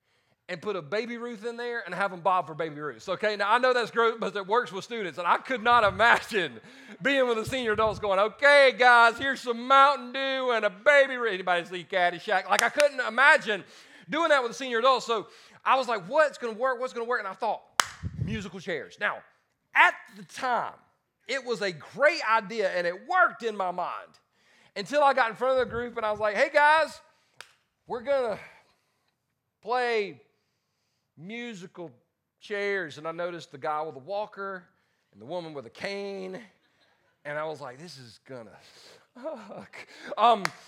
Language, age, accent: English, 40-59, American